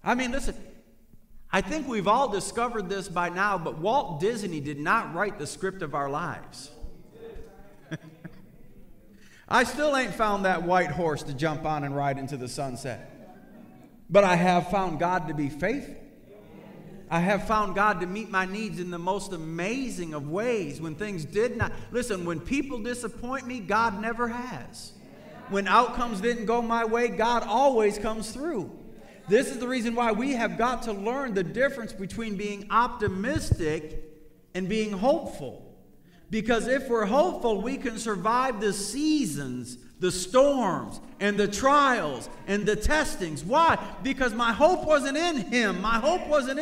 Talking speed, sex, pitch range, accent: 160 wpm, male, 190-280 Hz, American